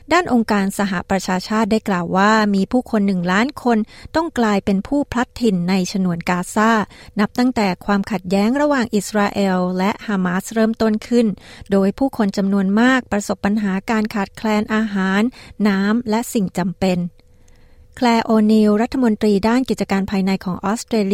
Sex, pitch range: female, 190-220 Hz